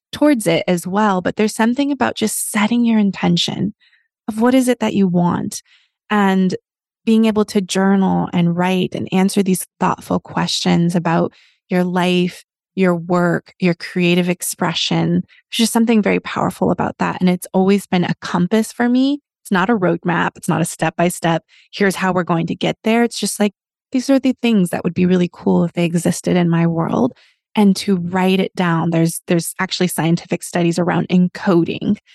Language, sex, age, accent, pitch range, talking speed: English, female, 20-39, American, 175-215 Hz, 185 wpm